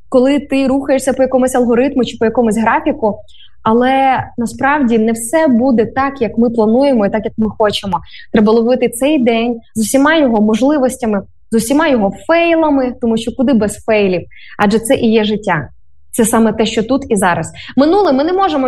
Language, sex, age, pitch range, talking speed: Ukrainian, female, 20-39, 220-270 Hz, 185 wpm